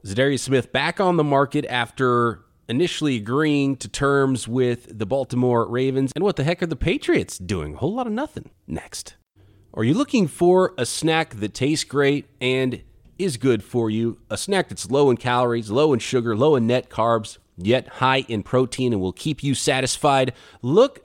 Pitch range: 115-160 Hz